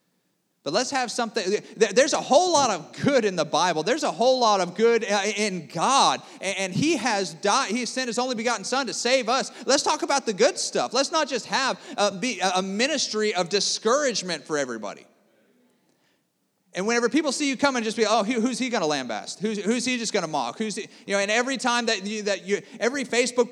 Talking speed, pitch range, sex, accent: 215 wpm, 195-255 Hz, male, American